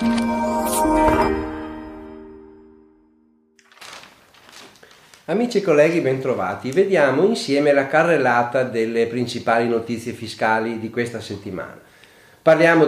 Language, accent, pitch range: Italian, native, 110-155 Hz